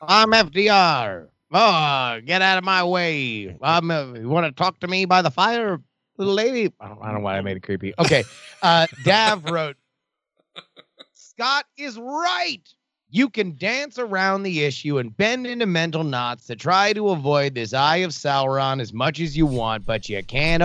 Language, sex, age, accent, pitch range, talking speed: English, male, 30-49, American, 135-200 Hz, 190 wpm